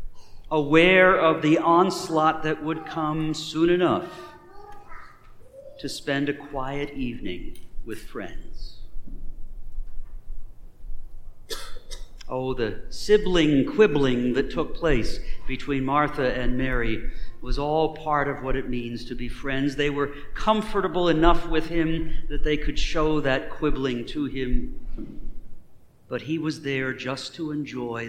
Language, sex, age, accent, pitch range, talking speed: English, male, 50-69, American, 120-165 Hz, 125 wpm